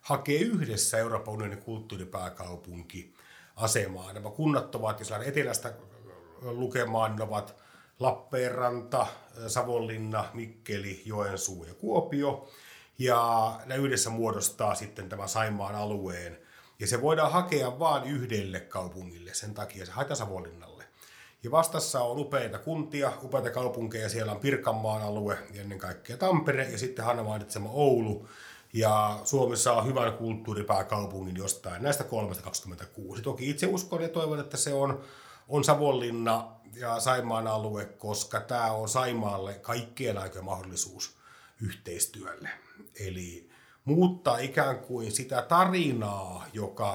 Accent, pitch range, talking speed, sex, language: native, 105-135 Hz, 115 wpm, male, Finnish